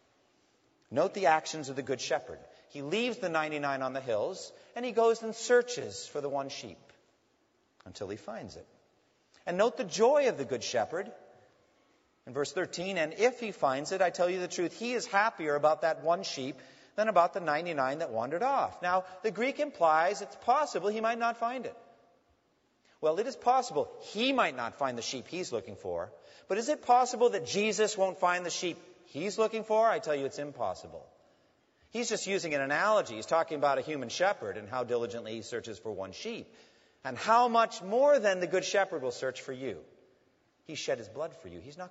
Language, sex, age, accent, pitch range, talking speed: English, male, 40-59, American, 135-225 Hz, 205 wpm